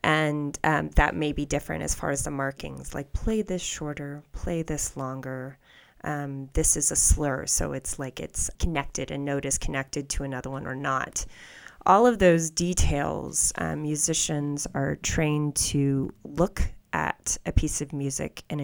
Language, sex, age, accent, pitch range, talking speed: English, female, 30-49, American, 140-160 Hz, 170 wpm